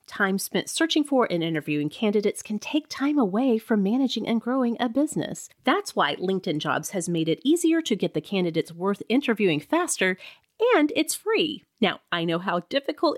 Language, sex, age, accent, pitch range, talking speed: English, female, 30-49, American, 180-265 Hz, 180 wpm